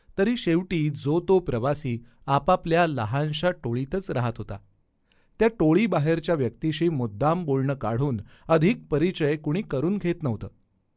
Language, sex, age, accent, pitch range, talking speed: Marathi, male, 40-59, native, 115-170 Hz, 120 wpm